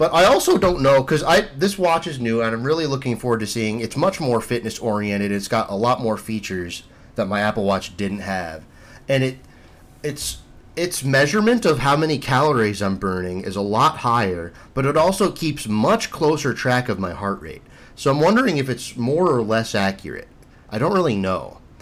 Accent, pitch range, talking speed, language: American, 100-140 Hz, 205 wpm, English